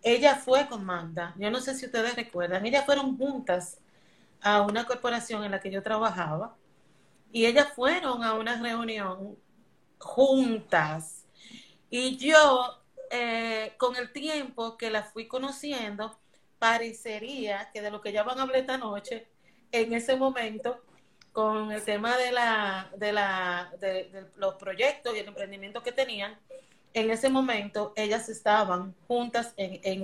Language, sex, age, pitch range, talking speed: Spanish, female, 30-49, 205-240 Hz, 145 wpm